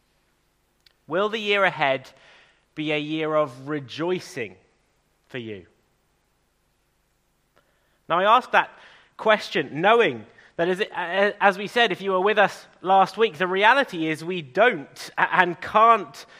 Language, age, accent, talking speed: English, 30-49, British, 130 wpm